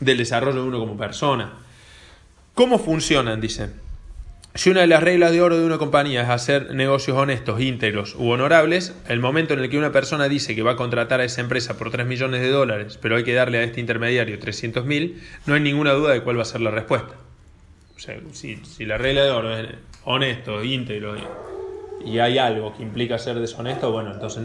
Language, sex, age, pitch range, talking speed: Spanish, male, 20-39, 110-140 Hz, 210 wpm